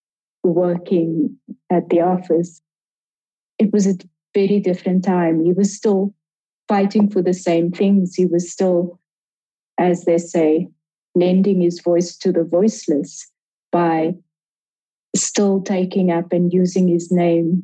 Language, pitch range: English, 170-200 Hz